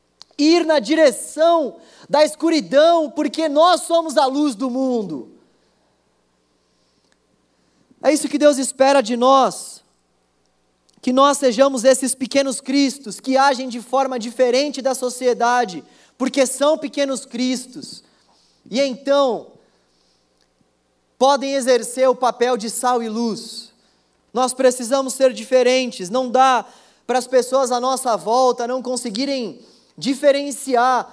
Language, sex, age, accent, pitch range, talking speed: Portuguese, male, 20-39, Brazilian, 250-285 Hz, 120 wpm